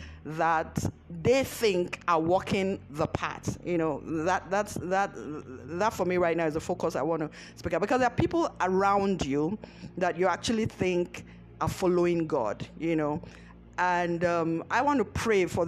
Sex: female